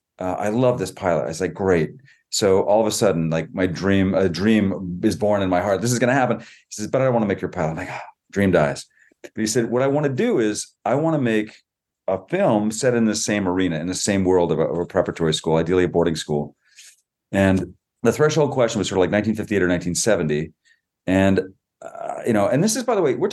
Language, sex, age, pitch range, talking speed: English, male, 40-59, 90-120 Hz, 255 wpm